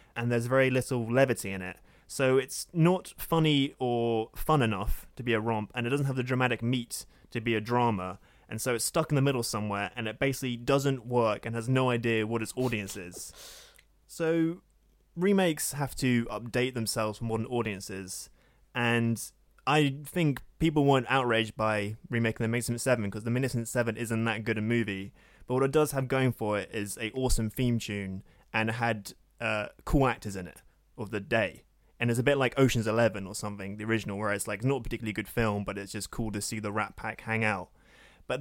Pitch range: 110-130 Hz